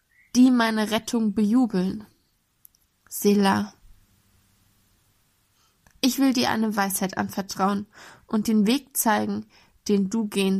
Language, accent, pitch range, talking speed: German, German, 195-240 Hz, 100 wpm